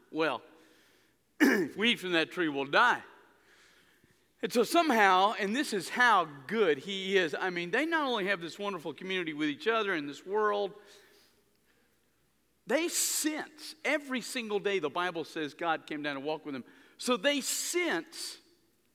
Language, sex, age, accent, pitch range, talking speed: German, male, 50-69, American, 200-315 Hz, 160 wpm